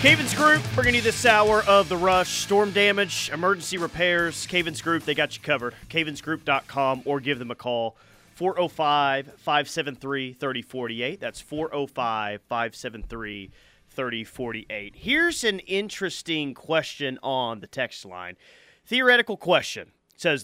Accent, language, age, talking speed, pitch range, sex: American, English, 30-49, 115 wpm, 125-180 Hz, male